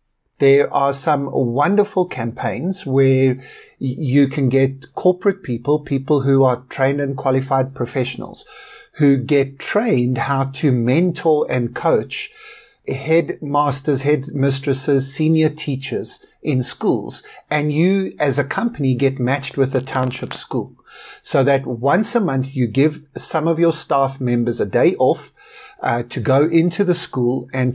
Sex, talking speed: male, 145 wpm